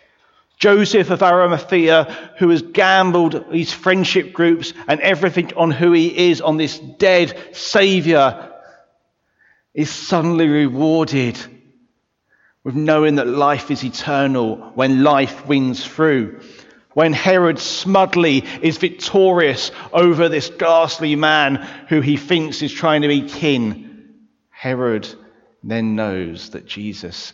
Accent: British